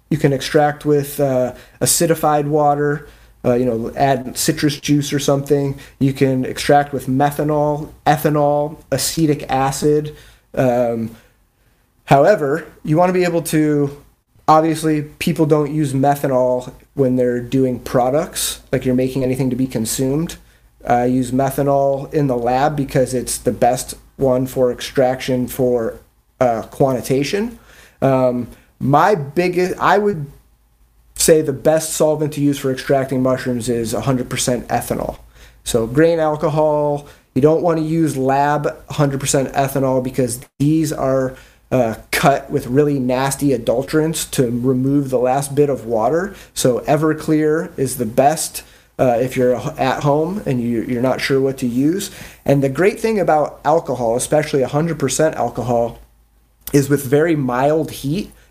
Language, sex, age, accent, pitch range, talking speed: English, male, 30-49, American, 125-150 Hz, 140 wpm